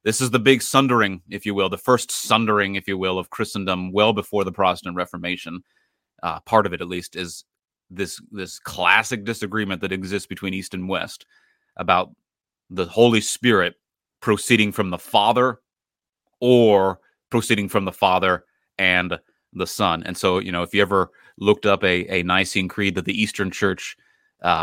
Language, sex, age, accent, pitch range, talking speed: English, male, 30-49, American, 90-105 Hz, 175 wpm